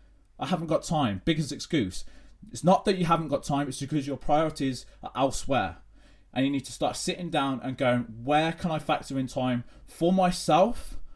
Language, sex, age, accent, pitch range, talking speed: English, male, 20-39, British, 120-160 Hz, 195 wpm